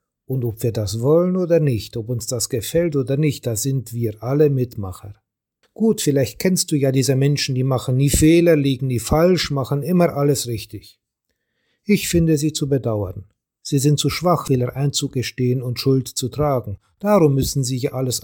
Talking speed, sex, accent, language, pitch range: 185 wpm, male, German, German, 120-155 Hz